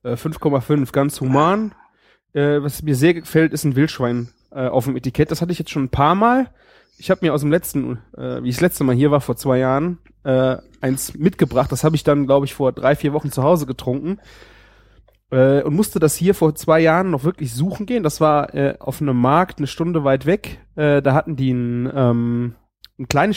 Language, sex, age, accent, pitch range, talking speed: German, male, 30-49, German, 130-165 Hz, 220 wpm